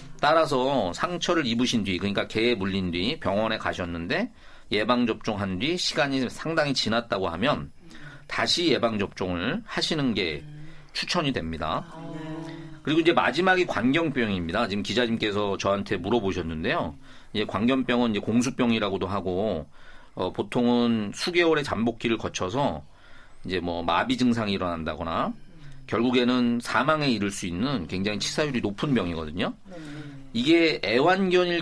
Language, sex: Korean, male